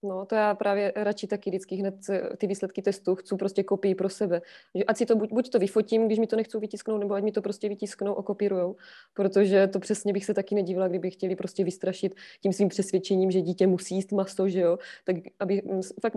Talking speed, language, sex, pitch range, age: 225 wpm, Czech, female, 190-220 Hz, 20-39